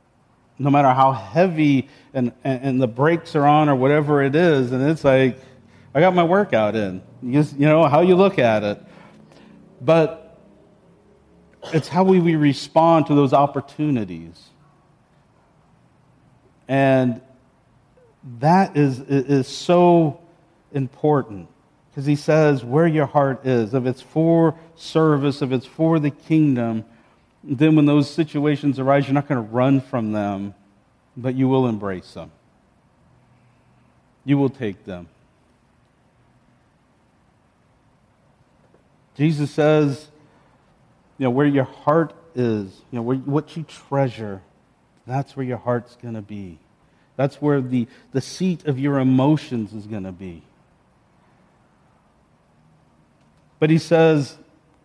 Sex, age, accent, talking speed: male, 50-69, American, 130 wpm